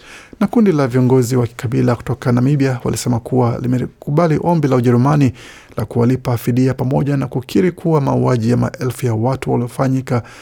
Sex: male